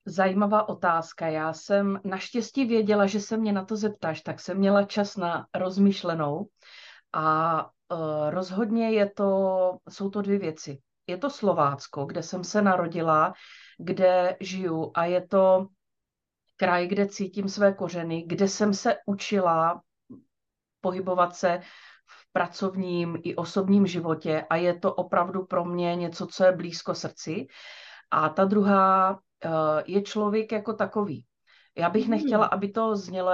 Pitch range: 170-200 Hz